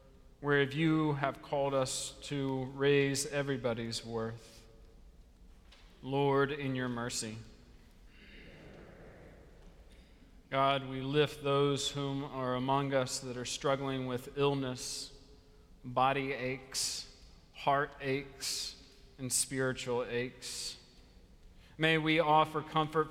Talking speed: 100 wpm